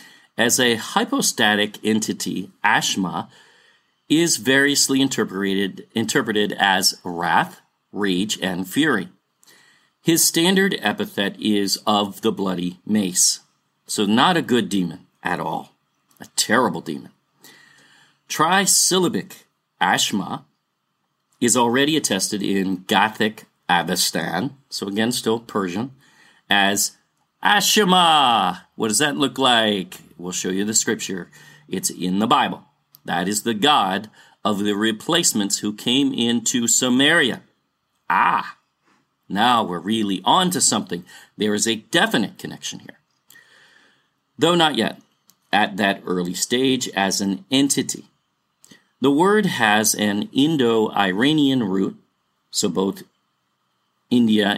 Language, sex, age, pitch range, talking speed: English, male, 40-59, 100-135 Hz, 115 wpm